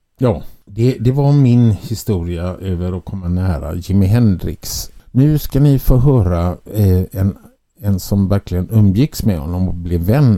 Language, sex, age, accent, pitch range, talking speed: Swedish, male, 60-79, Norwegian, 85-110 Hz, 160 wpm